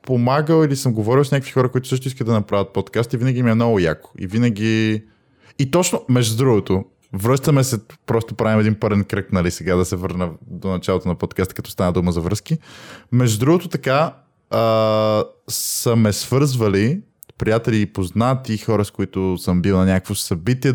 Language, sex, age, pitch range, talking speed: Bulgarian, male, 20-39, 95-120 Hz, 180 wpm